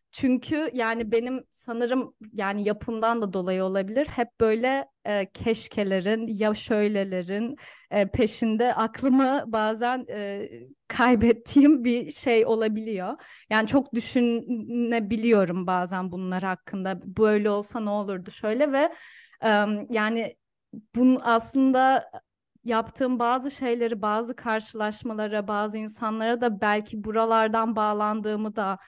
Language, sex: Turkish, female